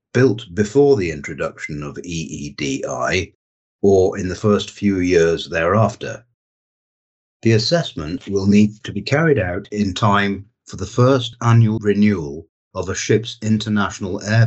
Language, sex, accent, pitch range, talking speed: English, male, British, 95-115 Hz, 135 wpm